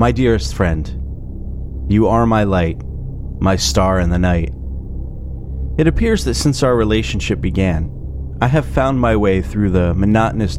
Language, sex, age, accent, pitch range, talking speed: English, male, 30-49, American, 65-110 Hz, 155 wpm